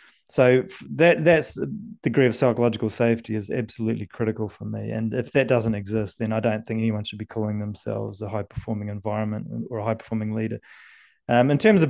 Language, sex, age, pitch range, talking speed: English, male, 20-39, 110-135 Hz, 190 wpm